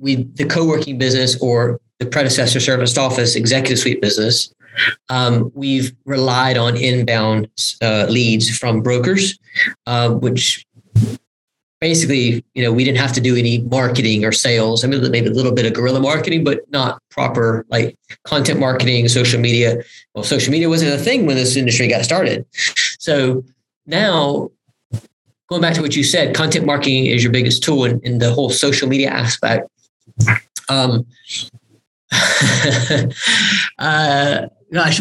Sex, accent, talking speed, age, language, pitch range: male, American, 150 wpm, 30-49, English, 120-145 Hz